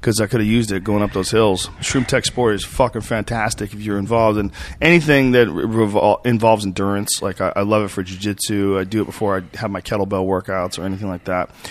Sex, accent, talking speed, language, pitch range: male, American, 230 wpm, English, 100-120 Hz